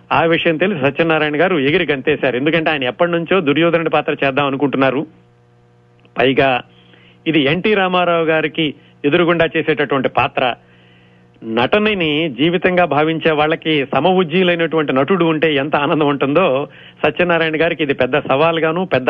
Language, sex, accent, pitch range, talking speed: Telugu, male, native, 125-165 Hz, 125 wpm